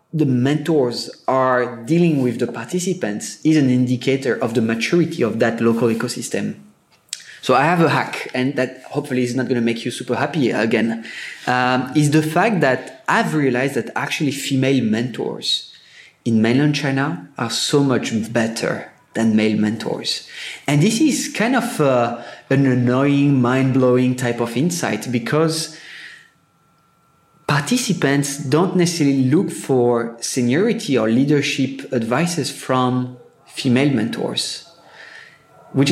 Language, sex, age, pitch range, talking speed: English, male, 20-39, 120-150 Hz, 135 wpm